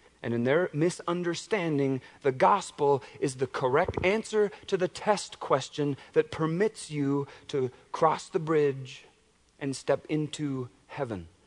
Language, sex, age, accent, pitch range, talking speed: English, male, 40-59, American, 130-165 Hz, 130 wpm